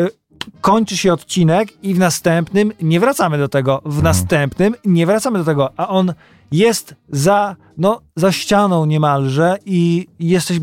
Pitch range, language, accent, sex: 150-185 Hz, Polish, native, male